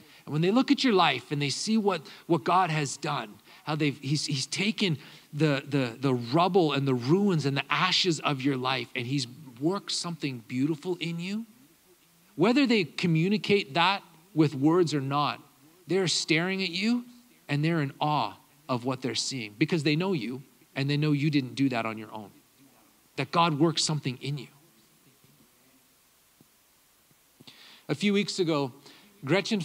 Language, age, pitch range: English, 40-59, 125-165 Hz